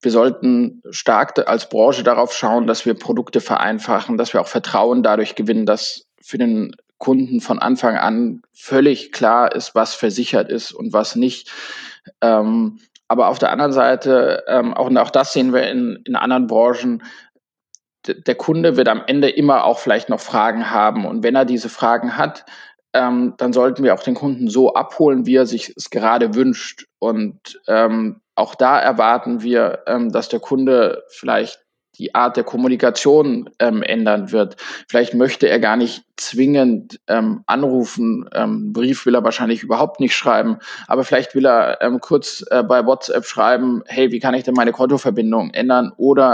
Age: 20-39